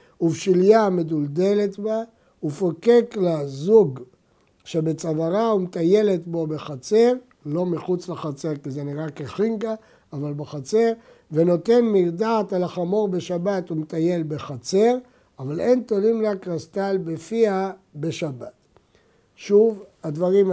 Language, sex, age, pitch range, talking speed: Hebrew, male, 60-79, 160-215 Hz, 105 wpm